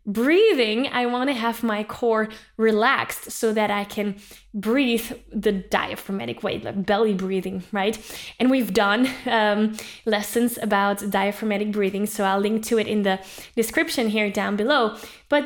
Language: English